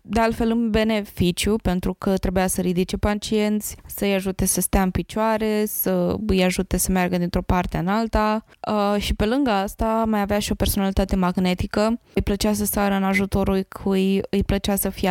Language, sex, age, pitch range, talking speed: Romanian, female, 20-39, 190-220 Hz, 185 wpm